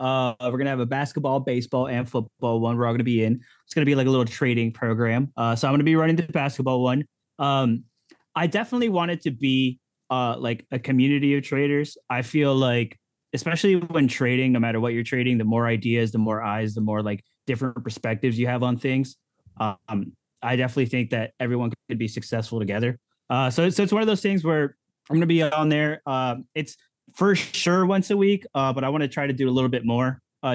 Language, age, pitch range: English, 20-39, 120-145 Hz